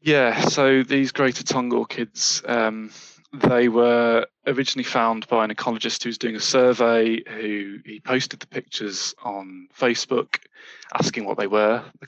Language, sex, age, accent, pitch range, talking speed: English, male, 20-39, British, 110-130 Hz, 150 wpm